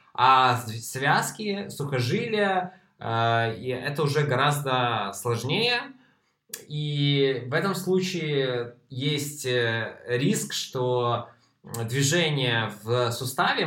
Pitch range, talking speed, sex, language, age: 115-145 Hz, 75 wpm, male, Russian, 20-39